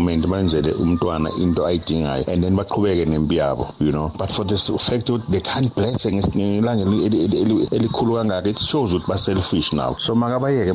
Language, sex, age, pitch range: English, male, 60-79, 95-130 Hz